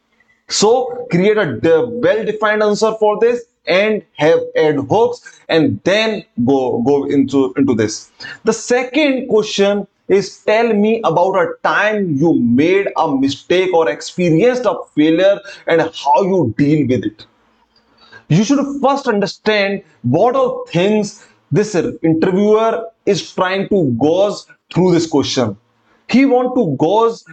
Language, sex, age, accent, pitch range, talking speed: English, male, 30-49, Indian, 160-240 Hz, 135 wpm